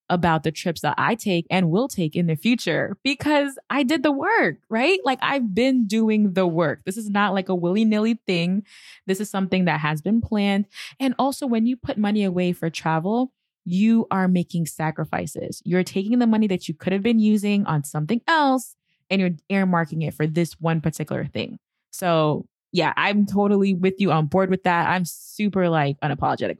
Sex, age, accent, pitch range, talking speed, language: female, 20-39, American, 165-215 Hz, 200 wpm, English